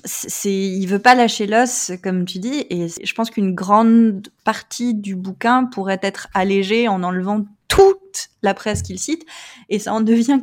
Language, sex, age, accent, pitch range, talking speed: French, female, 20-39, French, 190-230 Hz, 185 wpm